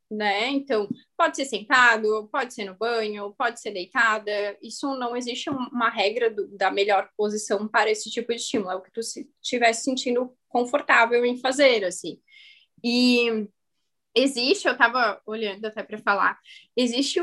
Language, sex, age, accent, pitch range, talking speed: Portuguese, female, 10-29, Brazilian, 225-285 Hz, 155 wpm